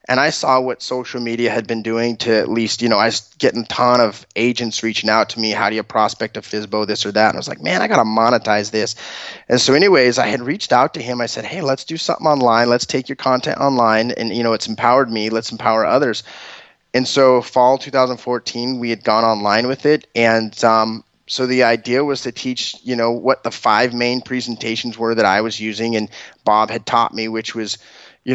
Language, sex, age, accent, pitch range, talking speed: English, male, 20-39, American, 110-130 Hz, 235 wpm